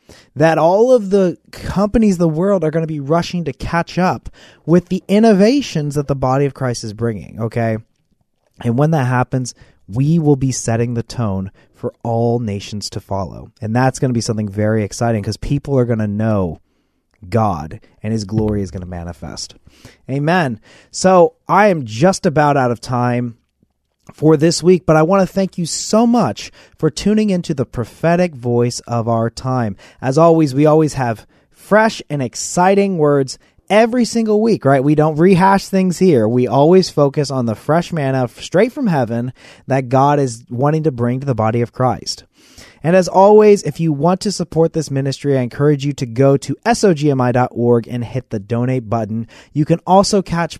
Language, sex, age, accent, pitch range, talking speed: English, male, 30-49, American, 120-175 Hz, 185 wpm